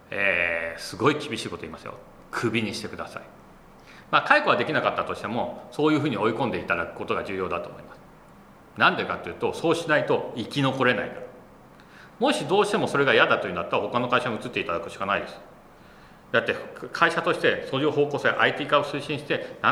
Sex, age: male, 40-59